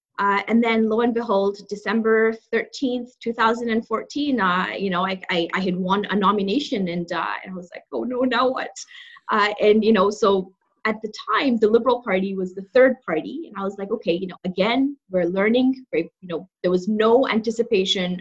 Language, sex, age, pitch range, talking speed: English, female, 20-39, 190-235 Hz, 200 wpm